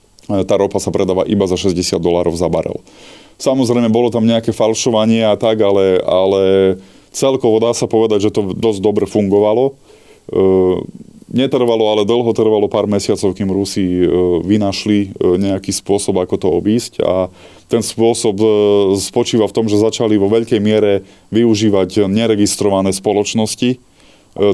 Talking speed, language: 150 wpm, Slovak